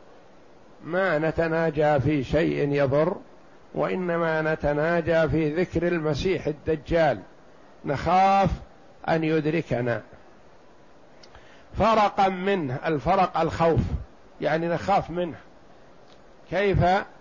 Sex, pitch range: male, 155-190 Hz